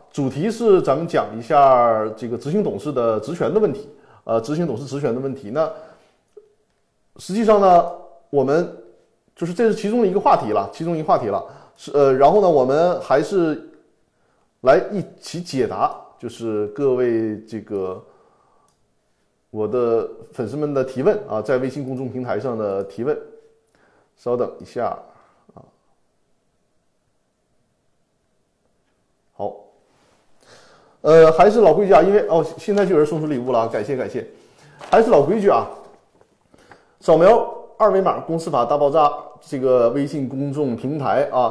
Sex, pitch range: male, 125-175 Hz